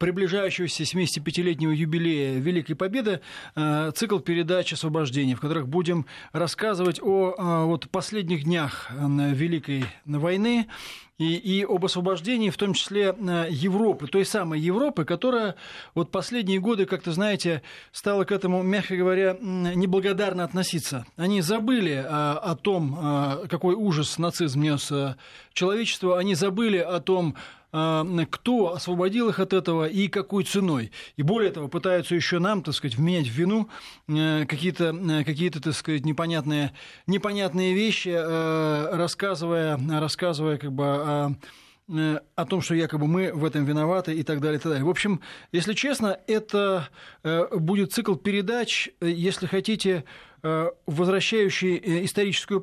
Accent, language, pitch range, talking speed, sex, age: native, Russian, 160-195 Hz, 125 wpm, male, 20-39